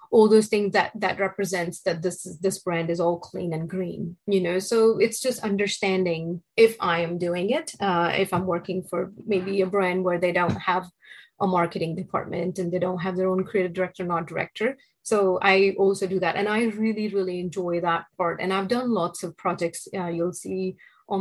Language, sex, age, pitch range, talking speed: English, female, 30-49, 180-205 Hz, 210 wpm